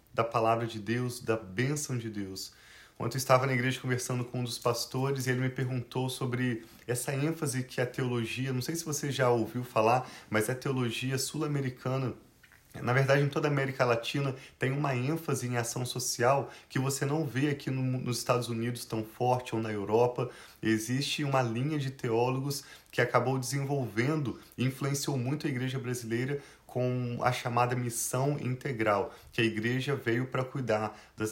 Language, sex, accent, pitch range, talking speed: Portuguese, male, Brazilian, 120-140 Hz, 175 wpm